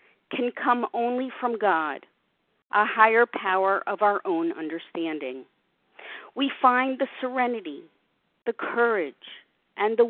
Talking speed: 120 wpm